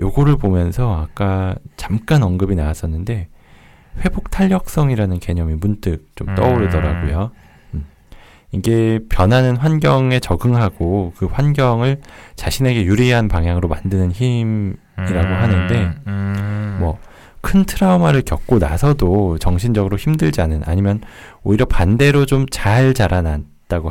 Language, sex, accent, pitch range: Korean, male, native, 85-125 Hz